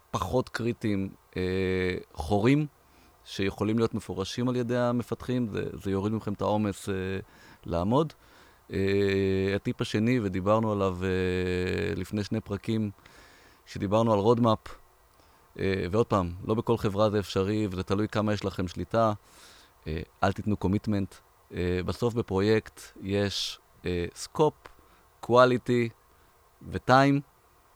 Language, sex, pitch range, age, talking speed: Hebrew, male, 95-115 Hz, 30-49, 120 wpm